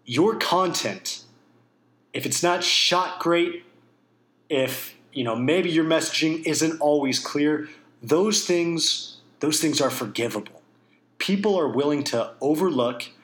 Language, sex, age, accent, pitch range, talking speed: English, male, 30-49, American, 135-175 Hz, 120 wpm